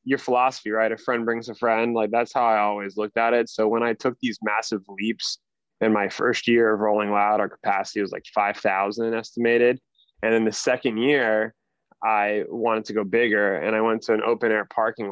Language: English